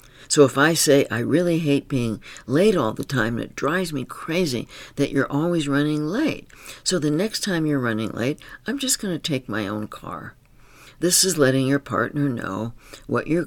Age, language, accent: 60-79, English, American